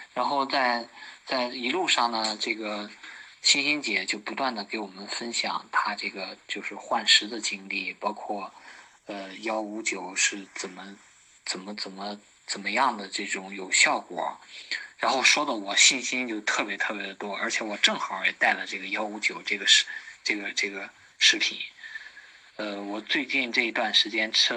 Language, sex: Chinese, male